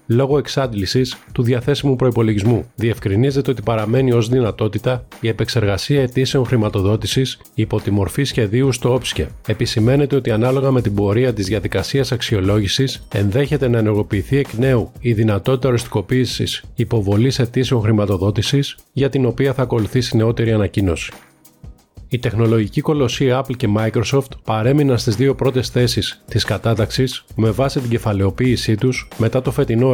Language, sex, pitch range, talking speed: Greek, male, 110-130 Hz, 135 wpm